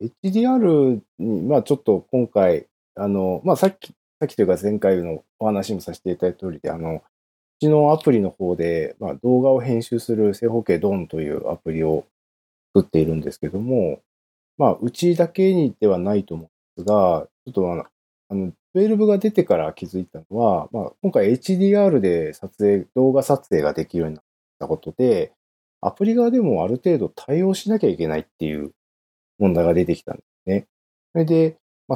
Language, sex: Japanese, male